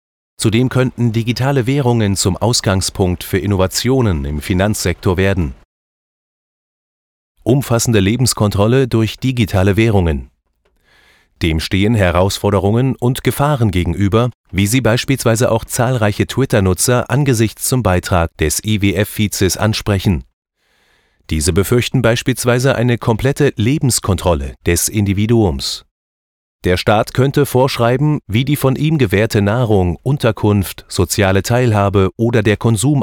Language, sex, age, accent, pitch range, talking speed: German, male, 30-49, German, 95-120 Hz, 105 wpm